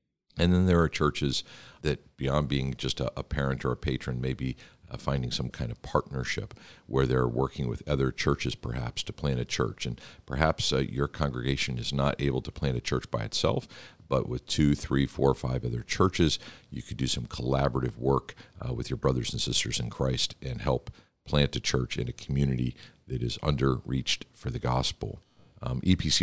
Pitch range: 65-75 Hz